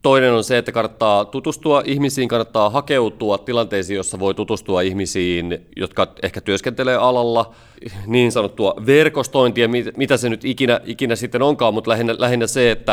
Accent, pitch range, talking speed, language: native, 100-130 Hz, 155 wpm, Finnish